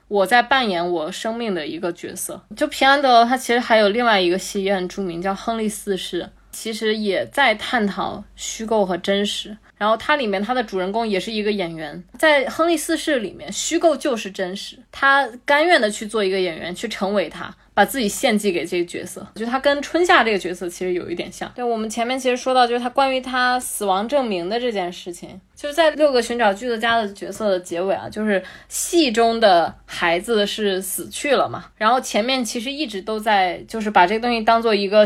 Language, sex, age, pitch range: Chinese, female, 20-39, 190-250 Hz